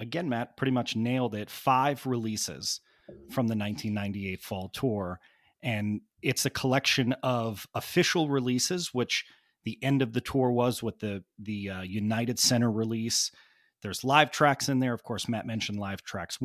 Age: 30-49